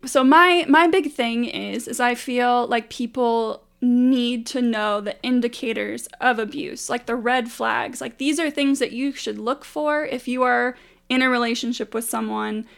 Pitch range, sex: 230-260 Hz, female